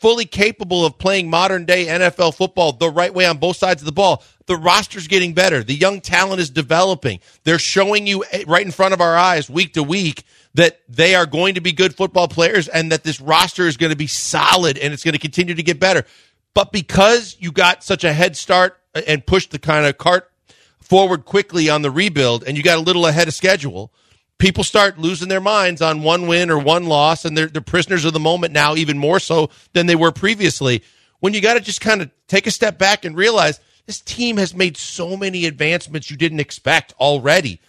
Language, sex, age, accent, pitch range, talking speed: English, male, 40-59, American, 155-190 Hz, 225 wpm